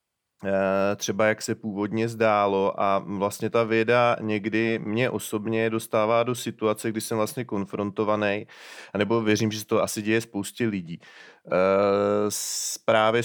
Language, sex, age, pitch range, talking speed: Czech, male, 30-49, 100-115 Hz, 130 wpm